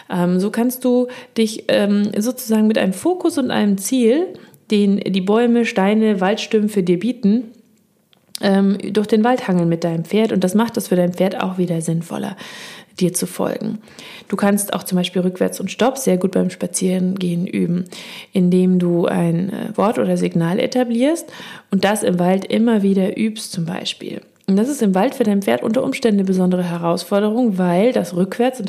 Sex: female